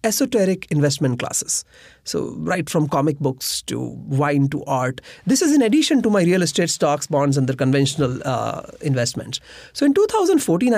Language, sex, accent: English, male, Indian